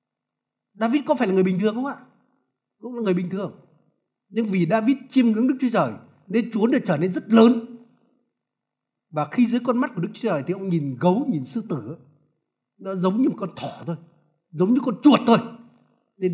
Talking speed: 215 wpm